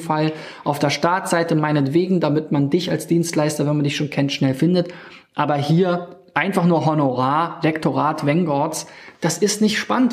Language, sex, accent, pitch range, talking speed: German, male, German, 150-195 Hz, 165 wpm